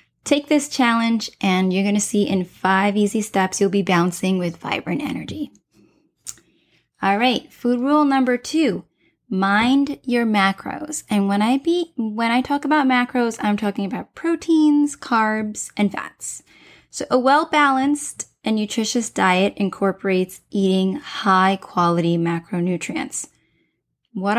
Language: English